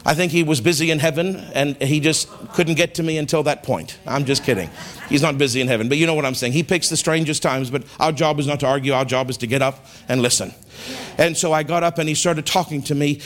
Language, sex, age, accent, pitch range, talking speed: English, male, 50-69, American, 150-190 Hz, 280 wpm